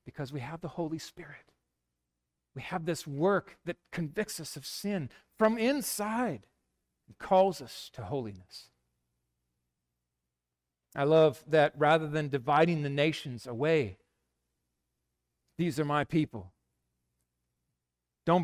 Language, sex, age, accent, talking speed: English, male, 40-59, American, 115 wpm